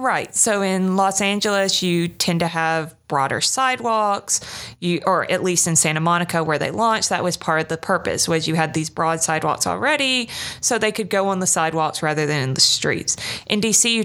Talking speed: 210 wpm